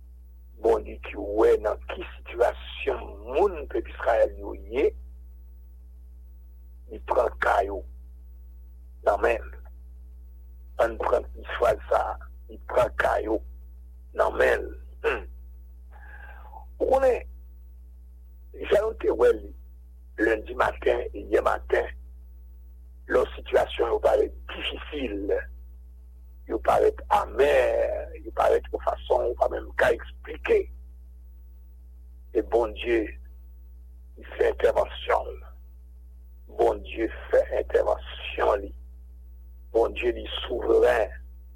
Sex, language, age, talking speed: male, English, 60-79, 95 wpm